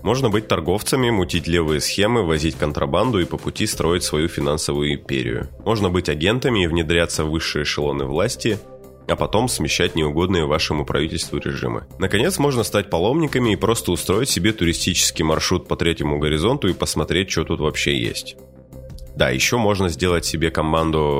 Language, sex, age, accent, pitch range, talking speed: Russian, male, 20-39, native, 75-95 Hz, 160 wpm